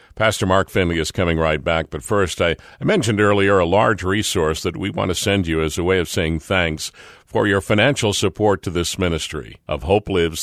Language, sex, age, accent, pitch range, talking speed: English, male, 50-69, American, 90-115 Hz, 220 wpm